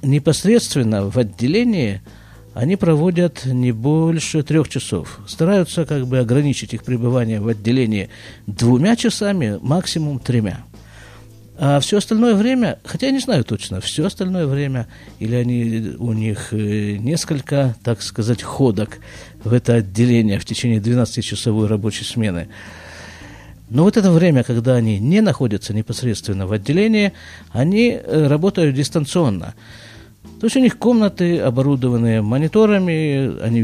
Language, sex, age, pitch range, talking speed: Russian, male, 50-69, 110-160 Hz, 125 wpm